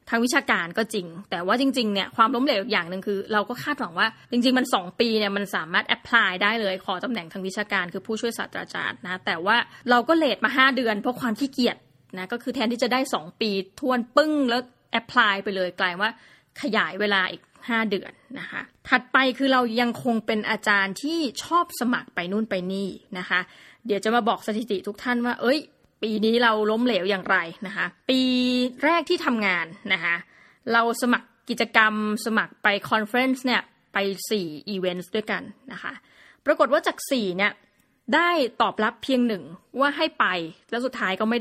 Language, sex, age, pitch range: Thai, female, 20-39, 200-255 Hz